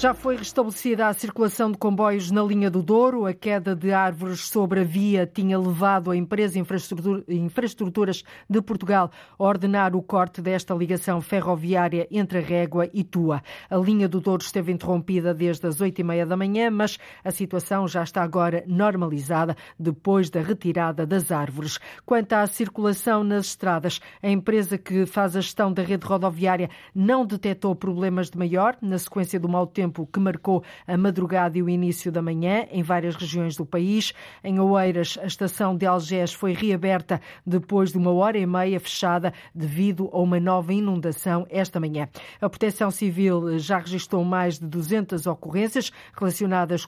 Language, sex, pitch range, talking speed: Portuguese, female, 175-200 Hz, 170 wpm